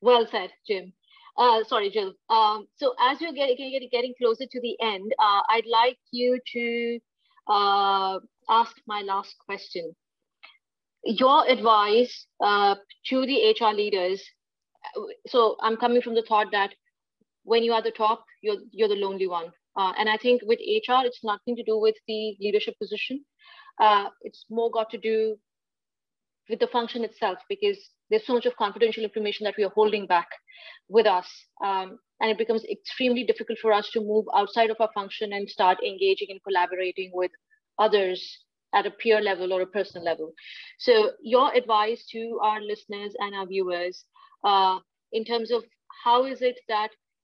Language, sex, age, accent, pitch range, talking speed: English, female, 30-49, Indian, 205-250 Hz, 170 wpm